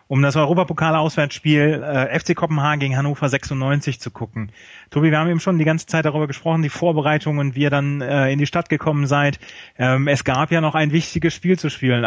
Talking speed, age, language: 210 wpm, 30-49, German